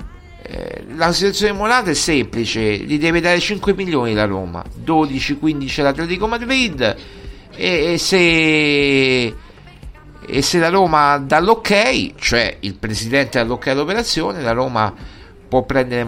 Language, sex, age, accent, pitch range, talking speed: Italian, male, 60-79, native, 105-145 Hz, 135 wpm